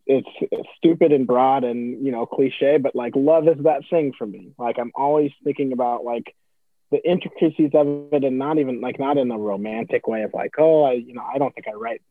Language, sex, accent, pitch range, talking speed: English, male, American, 115-145 Hz, 235 wpm